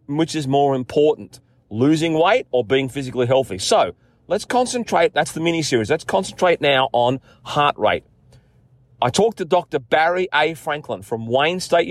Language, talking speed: English, 165 wpm